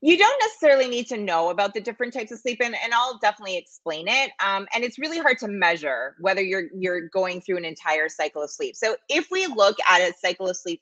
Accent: American